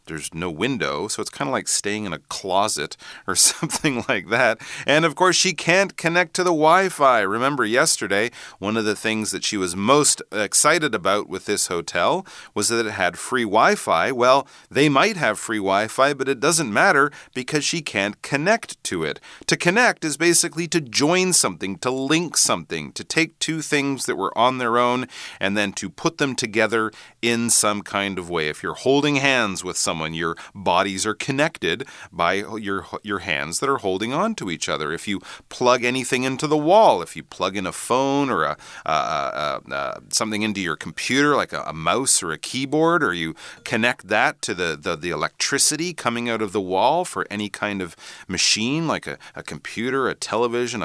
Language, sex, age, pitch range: Chinese, male, 40-59, 100-155 Hz